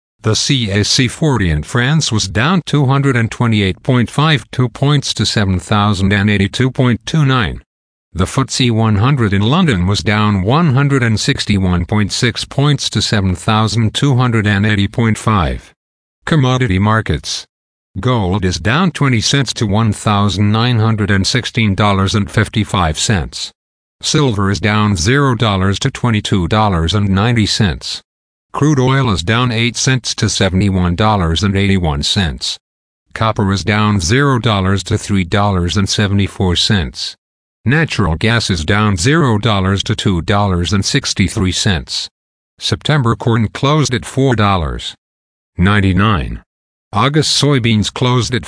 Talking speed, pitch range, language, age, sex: 85 wpm, 95-125 Hz, English, 50-69, male